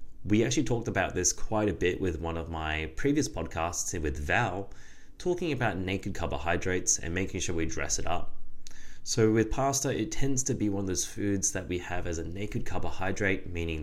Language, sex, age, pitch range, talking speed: English, male, 20-39, 85-110 Hz, 200 wpm